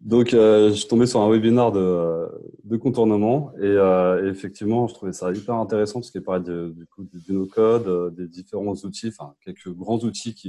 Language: French